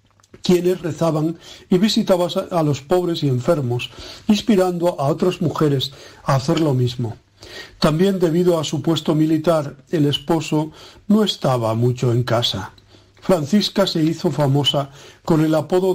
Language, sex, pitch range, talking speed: Spanish, male, 125-175 Hz, 140 wpm